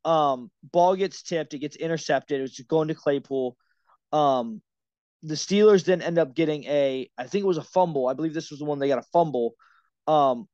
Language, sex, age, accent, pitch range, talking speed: English, male, 20-39, American, 135-165 Hz, 210 wpm